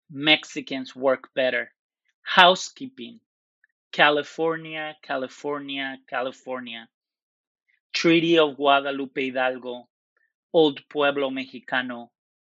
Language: Chinese